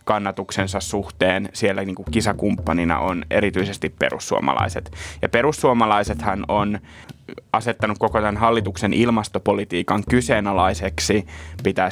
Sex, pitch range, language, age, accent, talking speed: male, 100-110 Hz, Finnish, 20-39, native, 90 wpm